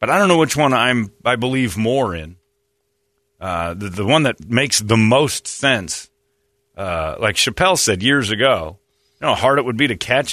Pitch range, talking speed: 100-150 Hz, 190 wpm